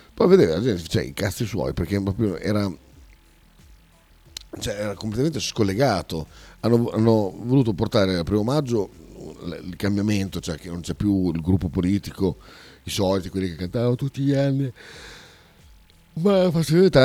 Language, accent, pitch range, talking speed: Italian, native, 80-110 Hz, 150 wpm